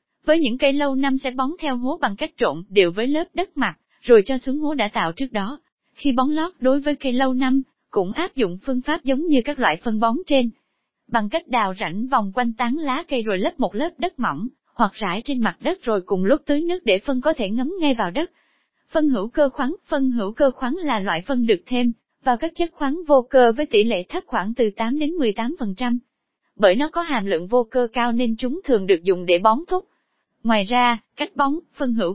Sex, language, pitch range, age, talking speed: female, Vietnamese, 225-290 Hz, 20-39, 240 wpm